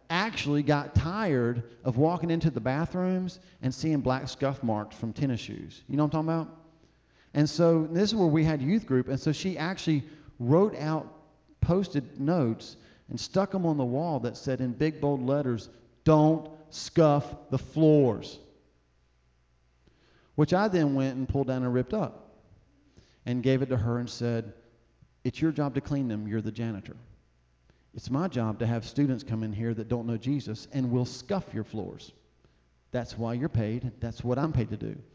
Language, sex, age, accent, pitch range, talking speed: English, male, 40-59, American, 115-160 Hz, 185 wpm